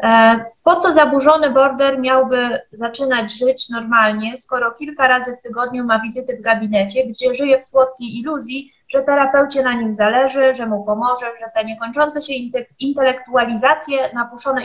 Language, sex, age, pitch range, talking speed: Polish, female, 20-39, 225-270 Hz, 150 wpm